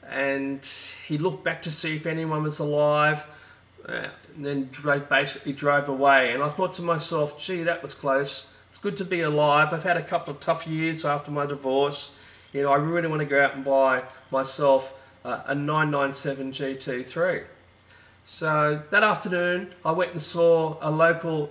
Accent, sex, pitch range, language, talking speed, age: Australian, male, 135-160 Hz, English, 175 wpm, 30-49